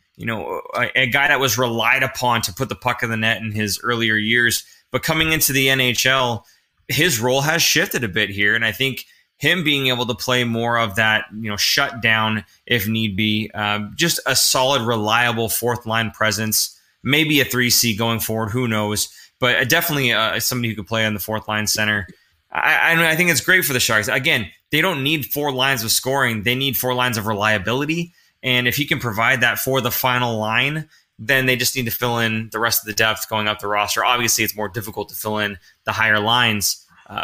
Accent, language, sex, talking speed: American, English, male, 225 wpm